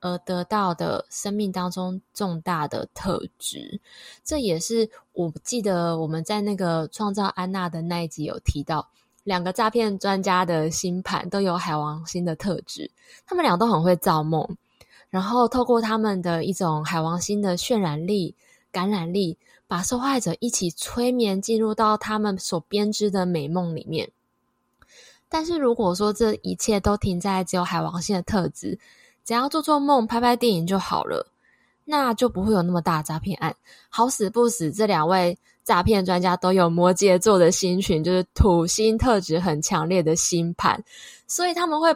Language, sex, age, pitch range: Chinese, female, 10-29, 175-225 Hz